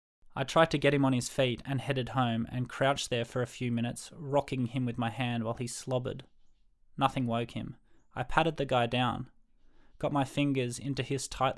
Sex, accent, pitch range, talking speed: male, Australian, 125-140 Hz, 205 wpm